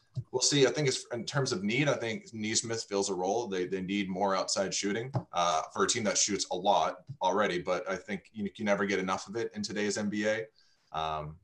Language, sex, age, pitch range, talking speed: English, male, 20-39, 90-115 Hz, 230 wpm